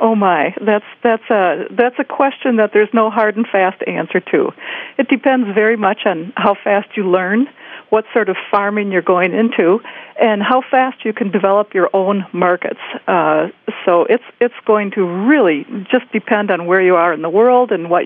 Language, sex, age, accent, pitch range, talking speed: English, female, 50-69, American, 180-225 Hz, 195 wpm